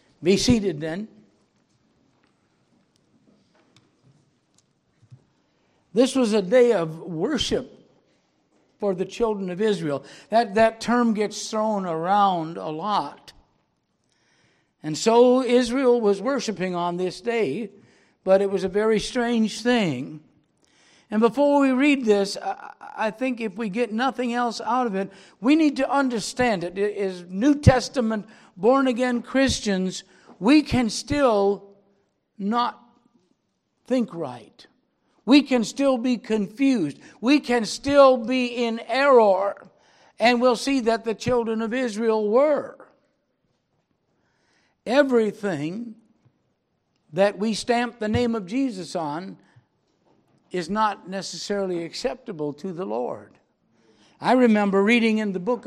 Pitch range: 195-245 Hz